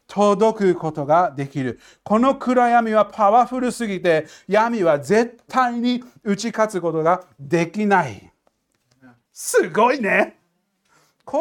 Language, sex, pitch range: Japanese, male, 140-225 Hz